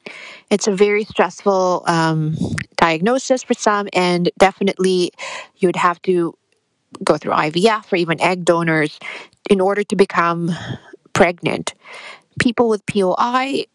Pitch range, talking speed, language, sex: 175-220 Hz, 120 wpm, English, female